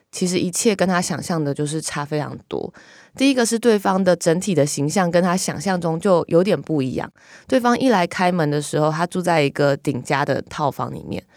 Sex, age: female, 20-39